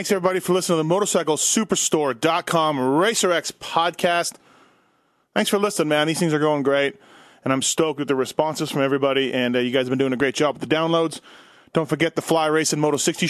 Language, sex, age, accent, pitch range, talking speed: English, male, 30-49, American, 140-175 Hz, 210 wpm